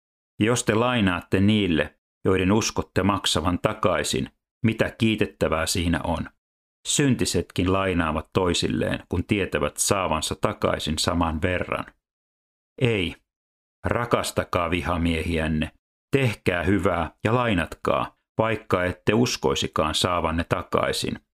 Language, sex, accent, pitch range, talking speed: Finnish, male, native, 80-105 Hz, 95 wpm